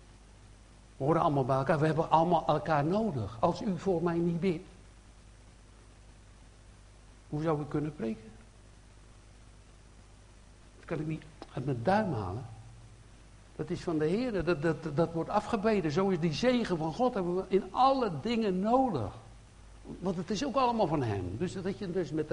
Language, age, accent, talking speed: Dutch, 60-79, Dutch, 170 wpm